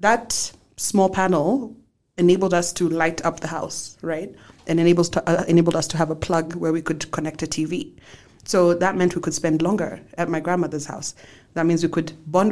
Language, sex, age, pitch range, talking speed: English, female, 30-49, 165-195 Hz, 205 wpm